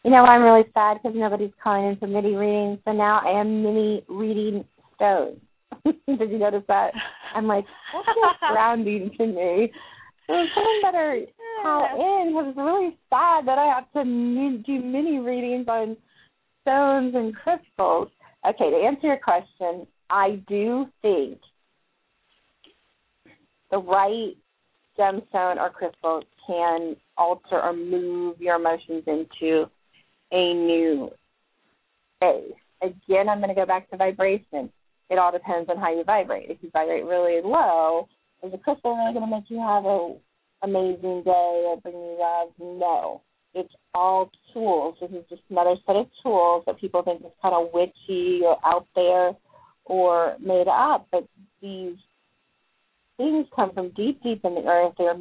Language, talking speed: English, 155 wpm